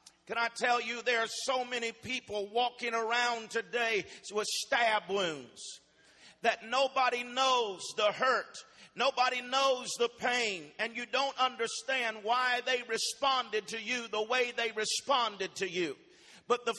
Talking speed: 145 wpm